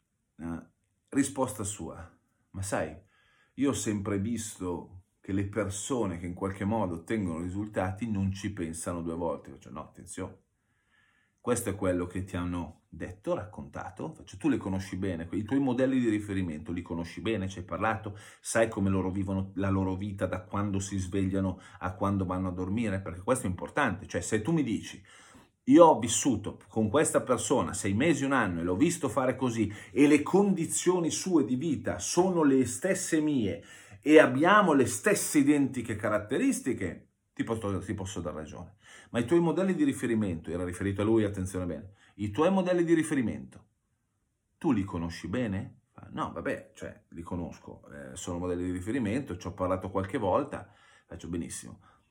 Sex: male